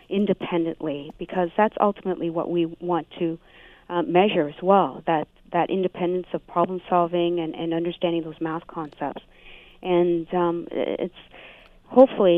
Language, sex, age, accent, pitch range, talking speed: English, female, 40-59, American, 165-190 Hz, 135 wpm